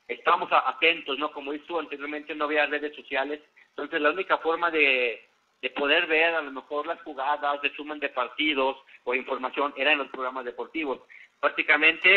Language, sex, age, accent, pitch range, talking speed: Spanish, male, 50-69, Mexican, 135-160 Hz, 180 wpm